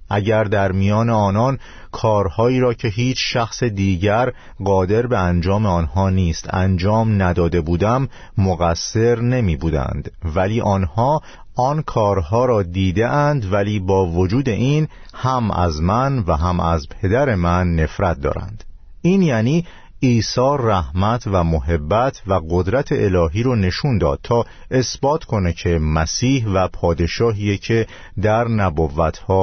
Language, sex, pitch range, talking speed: Persian, male, 90-120 Hz, 130 wpm